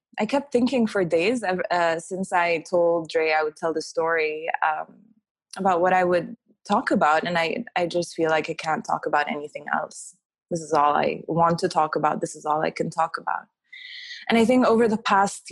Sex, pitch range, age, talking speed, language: female, 160-200 Hz, 20-39, 215 wpm, English